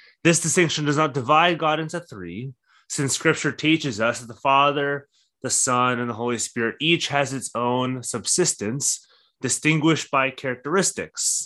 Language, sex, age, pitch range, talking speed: English, male, 20-39, 120-155 Hz, 150 wpm